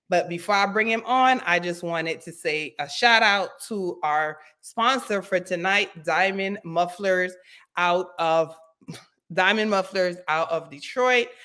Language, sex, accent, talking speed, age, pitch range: English, female, American, 145 wpm, 30-49, 170-220 Hz